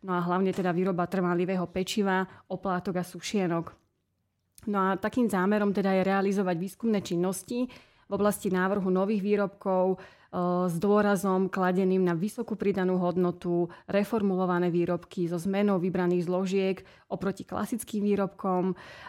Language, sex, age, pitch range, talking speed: Slovak, female, 30-49, 180-195 Hz, 130 wpm